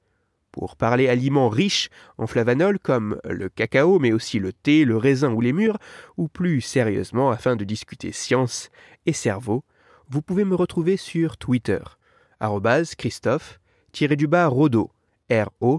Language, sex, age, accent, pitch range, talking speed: French, male, 30-49, French, 110-170 Hz, 125 wpm